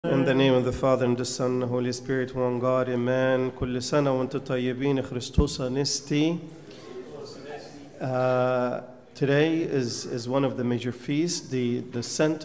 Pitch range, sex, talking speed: 125-150 Hz, male, 130 wpm